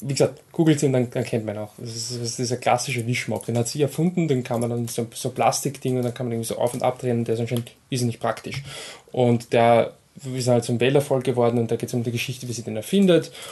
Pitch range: 115-135 Hz